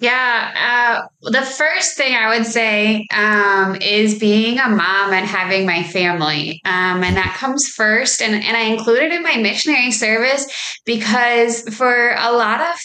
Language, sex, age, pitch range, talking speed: English, female, 20-39, 190-225 Hz, 170 wpm